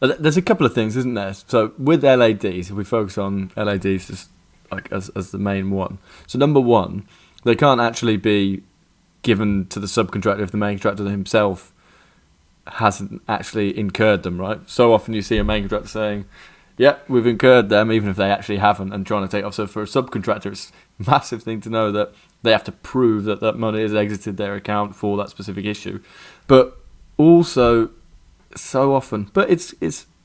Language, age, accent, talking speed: English, 20-39, British, 195 wpm